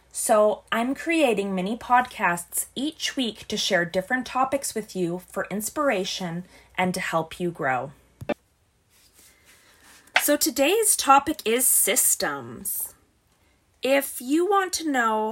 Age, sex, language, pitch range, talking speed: 20-39, female, English, 200-285 Hz, 115 wpm